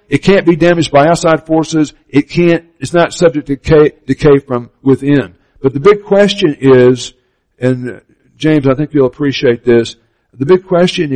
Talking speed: 170 wpm